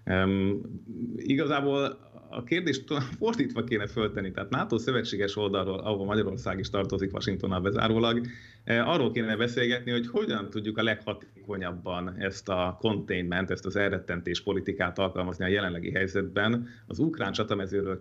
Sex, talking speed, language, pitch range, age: male, 130 wpm, Hungarian, 95-120 Hz, 30-49